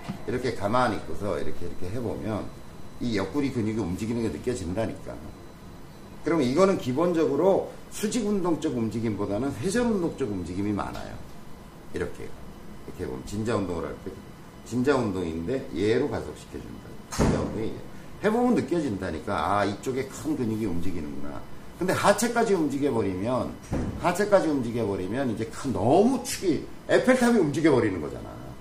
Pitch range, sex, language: 100-160 Hz, male, Korean